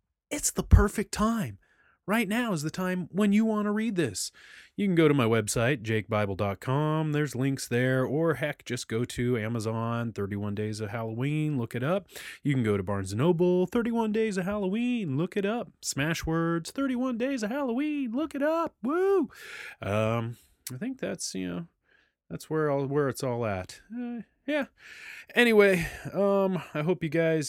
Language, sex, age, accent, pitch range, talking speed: English, male, 30-49, American, 120-185 Hz, 180 wpm